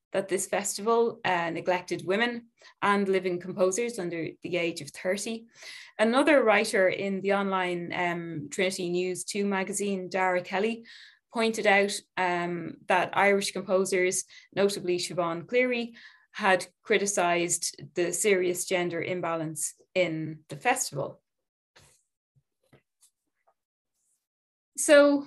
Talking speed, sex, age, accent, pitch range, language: 105 wpm, female, 20-39, Irish, 180-220 Hz, English